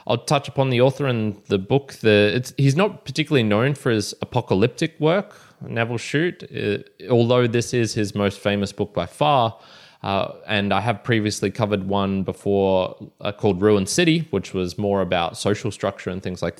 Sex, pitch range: male, 95-125 Hz